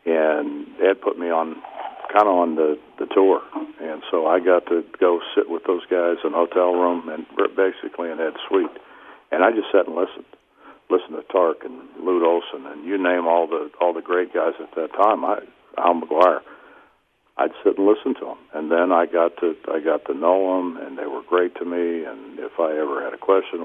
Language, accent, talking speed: English, American, 220 wpm